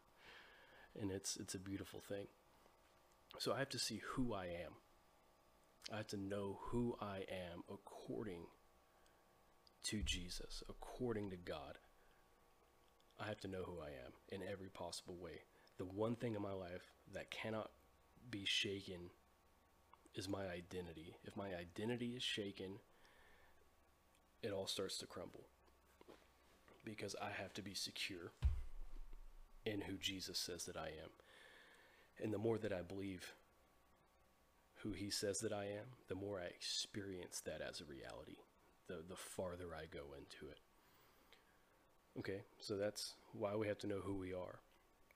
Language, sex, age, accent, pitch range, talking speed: English, male, 30-49, American, 85-105 Hz, 150 wpm